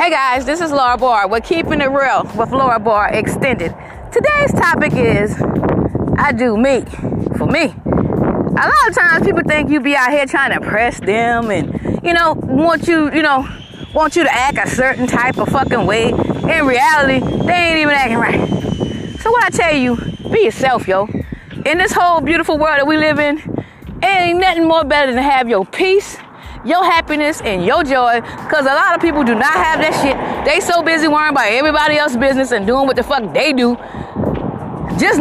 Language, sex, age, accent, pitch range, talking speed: English, female, 20-39, American, 250-330 Hz, 200 wpm